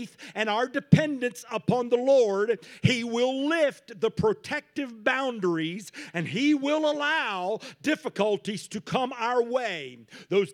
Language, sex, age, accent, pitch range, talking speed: English, male, 50-69, American, 210-265 Hz, 125 wpm